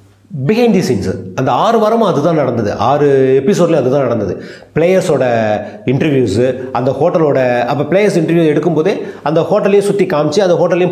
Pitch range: 120-160 Hz